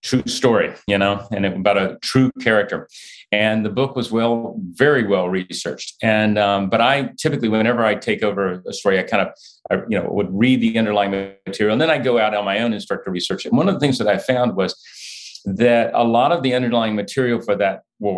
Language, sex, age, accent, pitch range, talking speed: English, male, 40-59, American, 105-140 Hz, 235 wpm